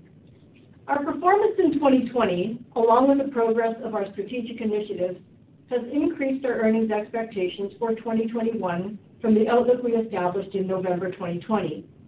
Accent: American